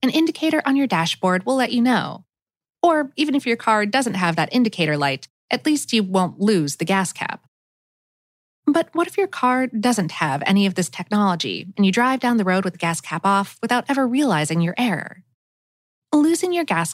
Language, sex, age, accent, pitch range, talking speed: English, female, 20-39, American, 170-265 Hz, 200 wpm